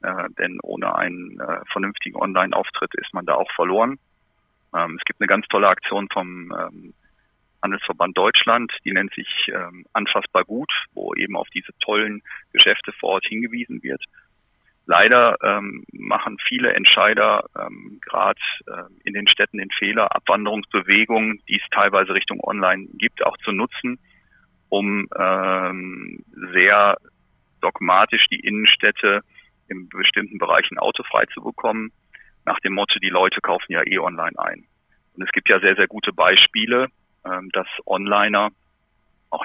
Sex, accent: male, German